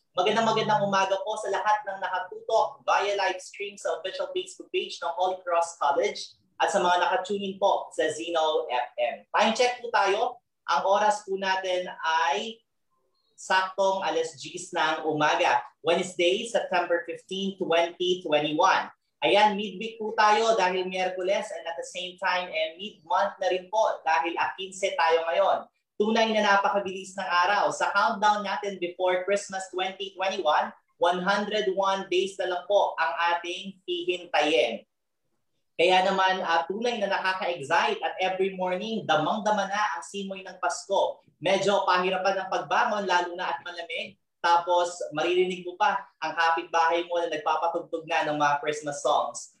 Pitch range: 170-200 Hz